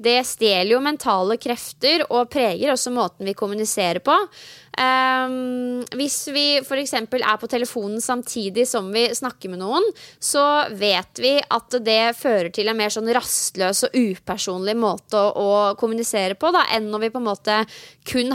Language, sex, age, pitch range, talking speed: English, female, 20-39, 205-255 Hz, 170 wpm